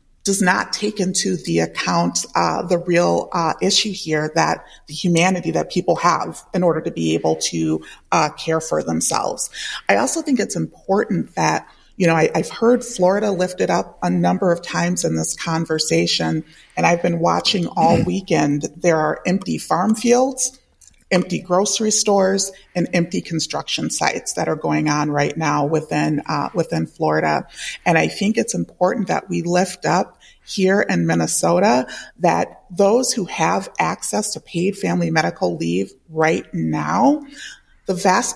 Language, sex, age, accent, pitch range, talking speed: English, female, 30-49, American, 145-190 Hz, 160 wpm